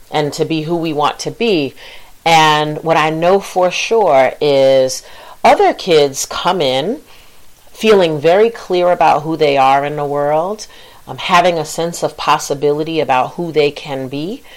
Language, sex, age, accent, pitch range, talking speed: English, female, 40-59, American, 145-180 Hz, 165 wpm